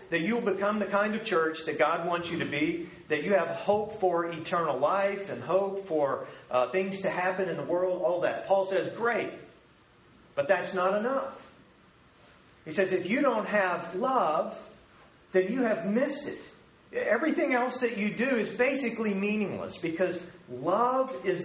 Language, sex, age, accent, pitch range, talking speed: English, male, 40-59, American, 165-210 Hz, 175 wpm